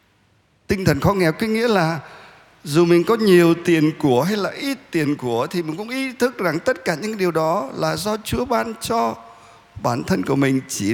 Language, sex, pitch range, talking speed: Vietnamese, male, 115-175 Hz, 215 wpm